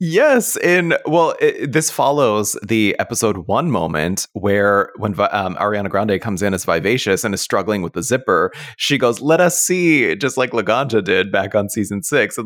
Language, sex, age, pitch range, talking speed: English, male, 30-49, 95-140 Hz, 190 wpm